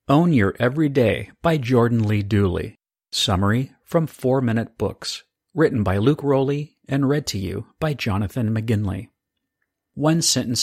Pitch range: 105-135 Hz